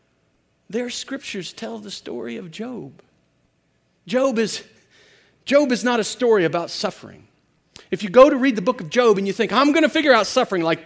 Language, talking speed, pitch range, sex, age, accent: English, 195 wpm, 115-190 Hz, male, 40-59, American